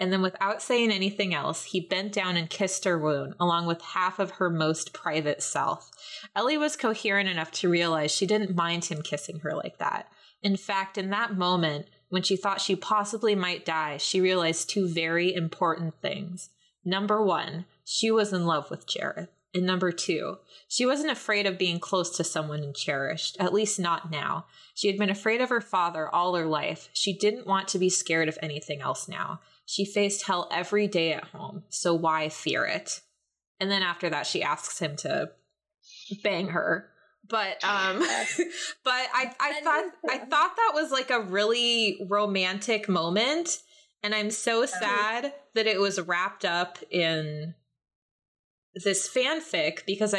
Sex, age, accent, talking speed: female, 20-39, American, 175 wpm